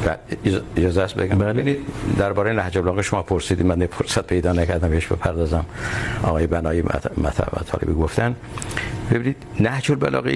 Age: 60-79